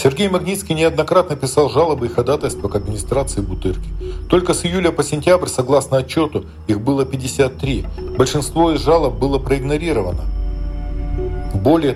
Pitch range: 100-135 Hz